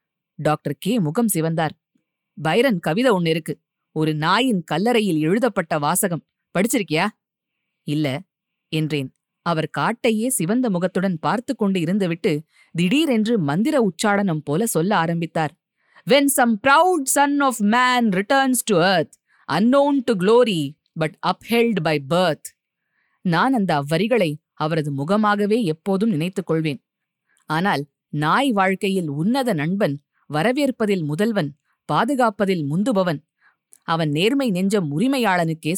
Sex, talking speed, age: female, 95 wpm, 20-39